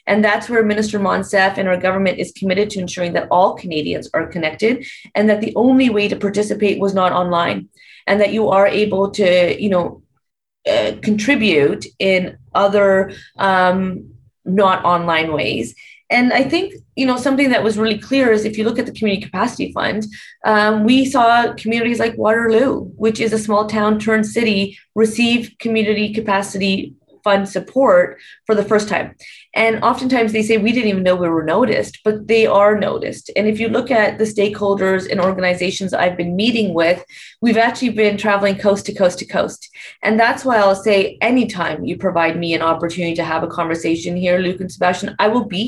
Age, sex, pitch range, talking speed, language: 30-49, female, 185-225 Hz, 190 wpm, English